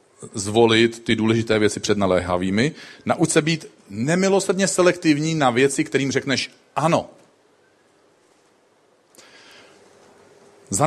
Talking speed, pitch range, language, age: 95 wpm, 120-155 Hz, Czech, 40-59